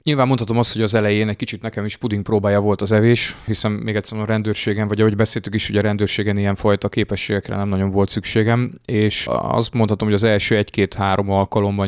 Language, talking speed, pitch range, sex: Hungarian, 205 wpm, 95-105 Hz, male